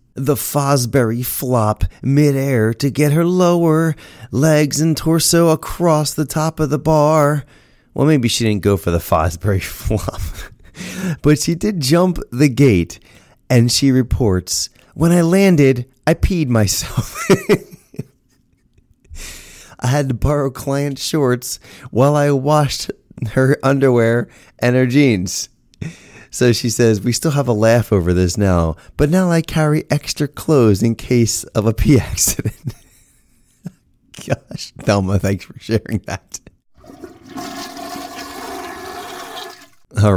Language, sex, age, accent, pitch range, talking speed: English, male, 30-49, American, 95-150 Hz, 125 wpm